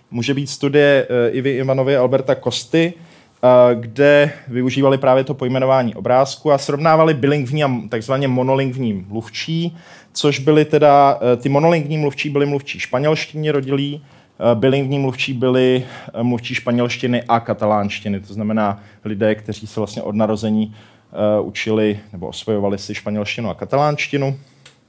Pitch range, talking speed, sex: 110-140 Hz, 125 wpm, male